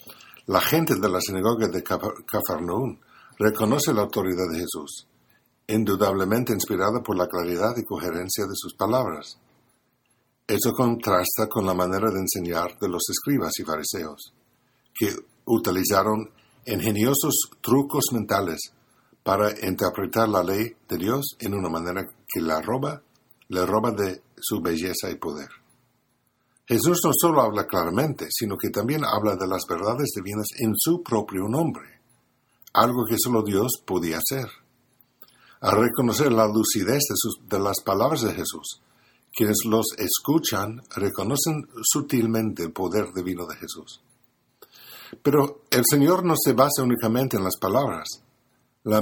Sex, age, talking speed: male, 60-79, 140 wpm